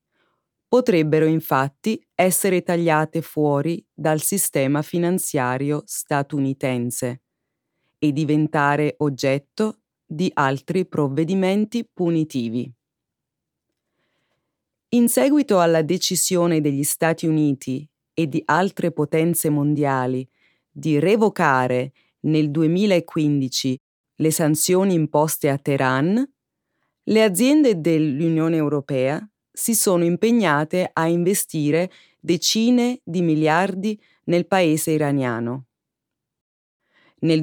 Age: 30-49